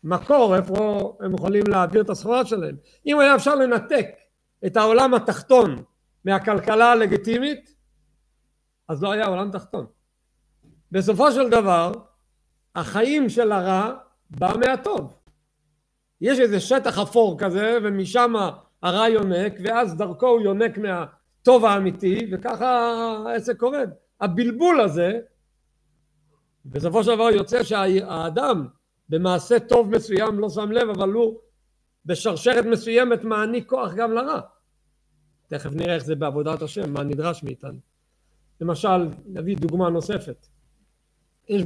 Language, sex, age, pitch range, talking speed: Hebrew, male, 50-69, 165-235 Hz, 120 wpm